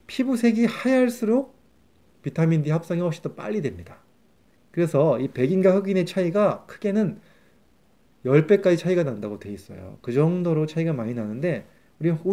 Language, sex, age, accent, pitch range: Korean, male, 30-49, native, 125-185 Hz